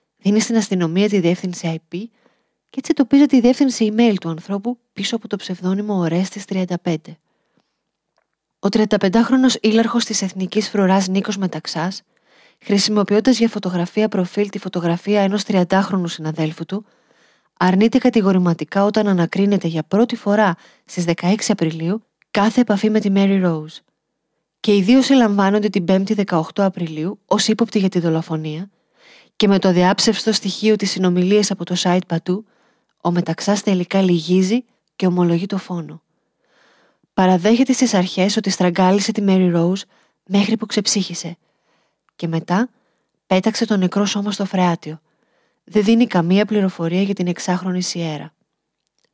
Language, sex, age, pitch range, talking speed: Greek, female, 30-49, 180-220 Hz, 140 wpm